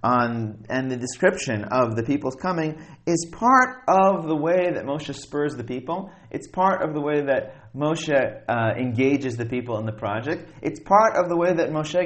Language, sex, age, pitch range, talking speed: English, male, 30-49, 130-180 Hz, 195 wpm